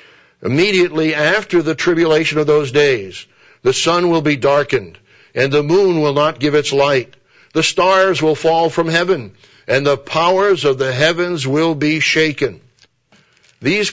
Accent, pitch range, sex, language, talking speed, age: American, 140-165 Hz, male, English, 155 wpm, 60-79